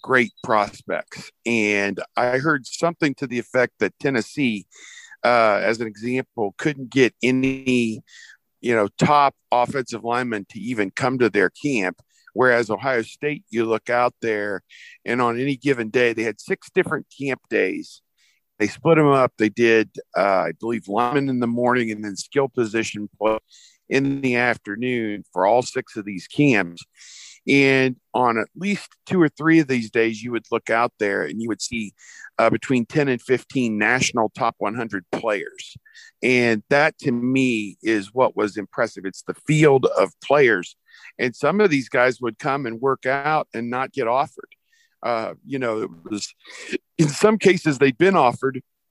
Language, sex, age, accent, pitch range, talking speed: English, male, 50-69, American, 115-145 Hz, 170 wpm